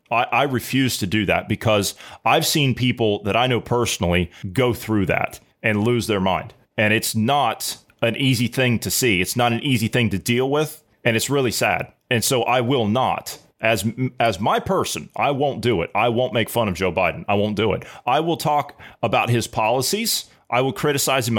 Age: 30-49